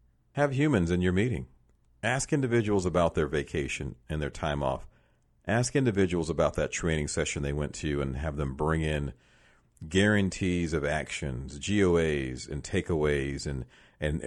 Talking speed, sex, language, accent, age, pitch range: 150 wpm, male, English, American, 40-59, 65-110 Hz